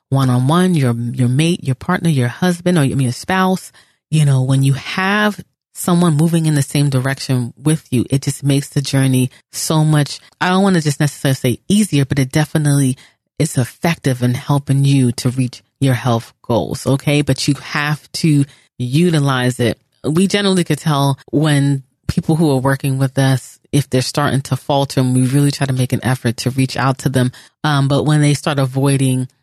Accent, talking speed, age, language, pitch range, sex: American, 190 wpm, 30-49, English, 130-160 Hz, female